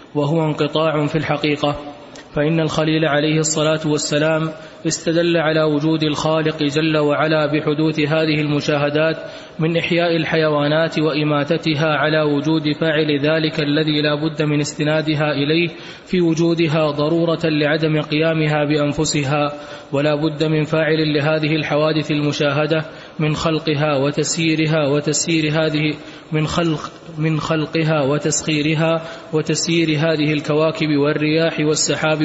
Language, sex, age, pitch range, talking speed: Arabic, male, 20-39, 150-160 Hz, 110 wpm